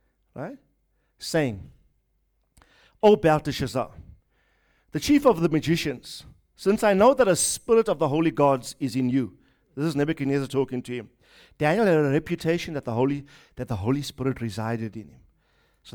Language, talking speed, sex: English, 160 wpm, male